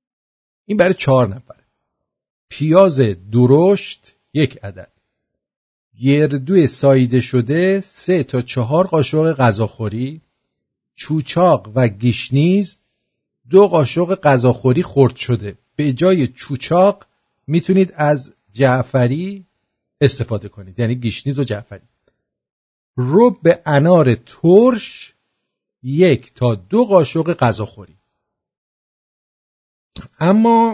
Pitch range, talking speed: 120-175 Hz, 90 wpm